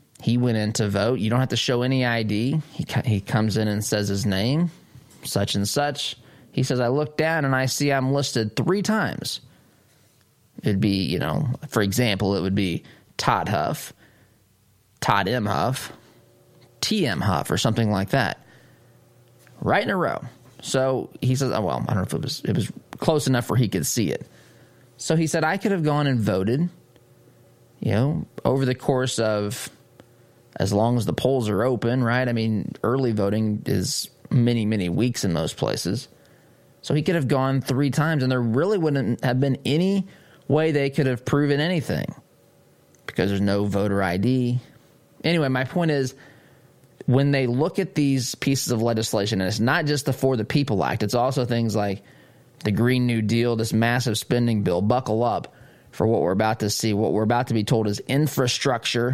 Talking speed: 190 wpm